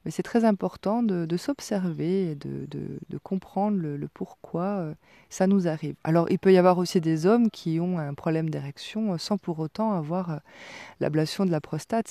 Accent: French